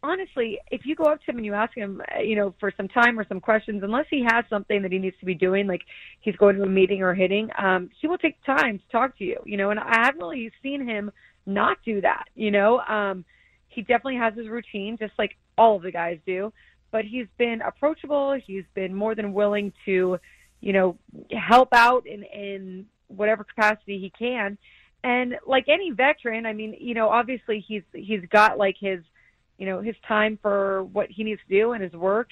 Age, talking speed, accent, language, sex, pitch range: 30-49, 220 wpm, American, English, female, 200-245 Hz